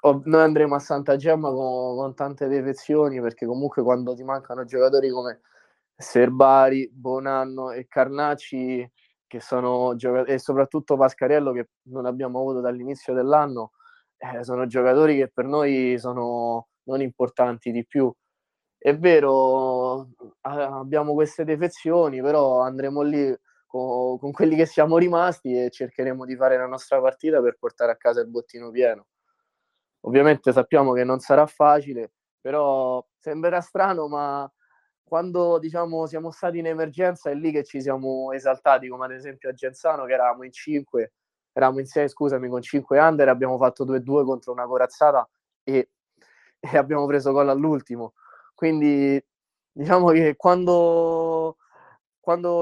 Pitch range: 130-160 Hz